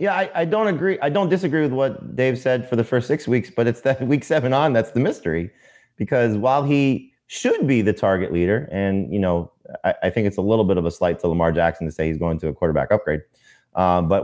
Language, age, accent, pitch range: English, 30-49, American, 85-115 Hz